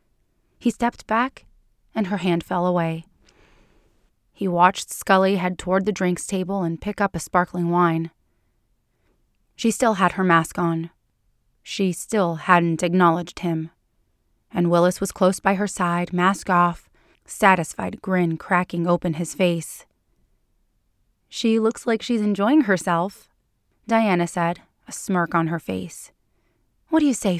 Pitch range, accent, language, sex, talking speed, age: 170-195 Hz, American, English, female, 140 wpm, 20-39